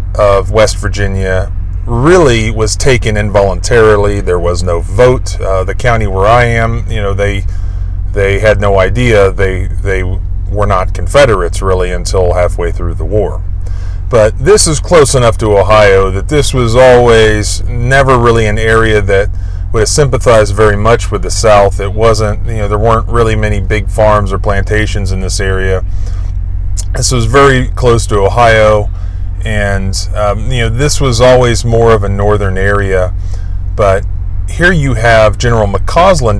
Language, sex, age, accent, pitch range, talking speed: English, male, 30-49, American, 90-115 Hz, 160 wpm